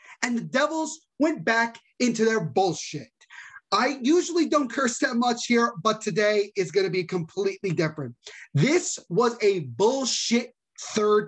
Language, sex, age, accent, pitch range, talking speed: English, male, 30-49, American, 205-295 Hz, 150 wpm